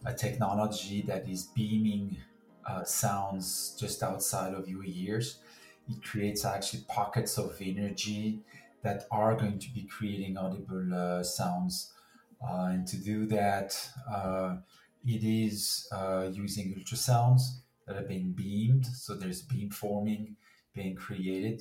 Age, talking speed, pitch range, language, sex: 40-59, 135 wpm, 95-110 Hz, English, male